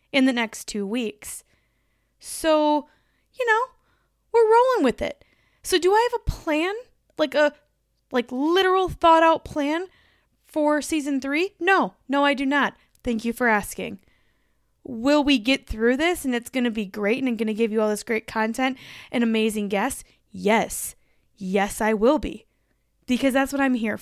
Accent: American